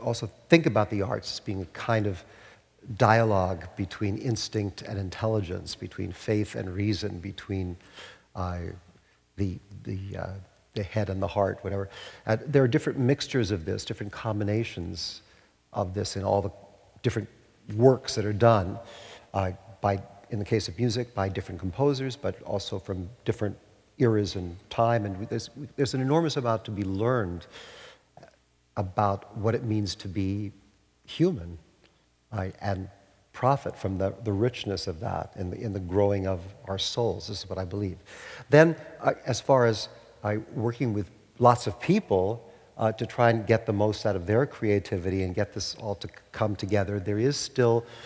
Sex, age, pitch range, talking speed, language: male, 50-69, 95-115 Hz, 170 wpm, English